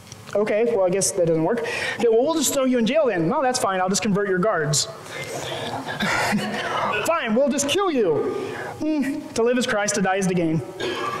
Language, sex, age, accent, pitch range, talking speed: English, male, 30-49, American, 200-260 Hz, 210 wpm